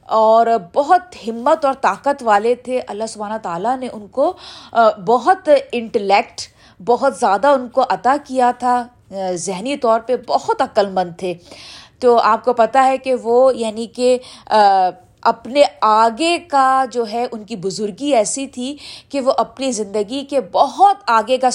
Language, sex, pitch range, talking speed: Urdu, female, 210-280 Hz, 155 wpm